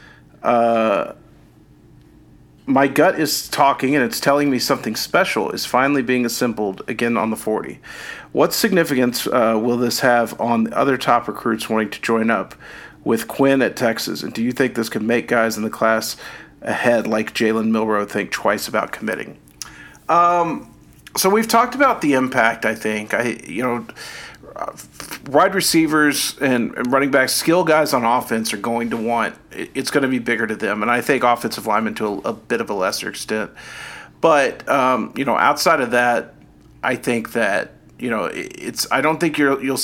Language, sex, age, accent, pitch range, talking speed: English, male, 40-59, American, 110-135 Hz, 180 wpm